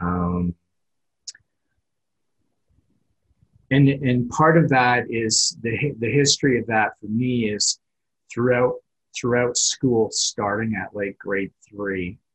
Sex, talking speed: male, 110 wpm